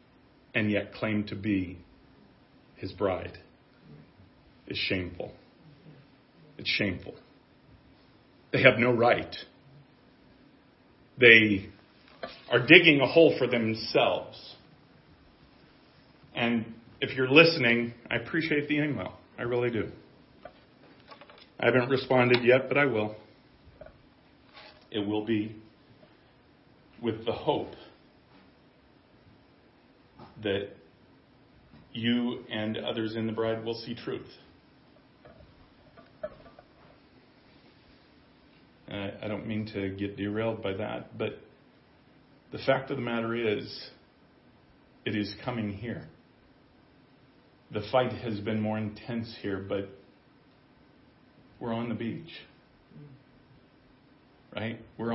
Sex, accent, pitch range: male, American, 105-130 Hz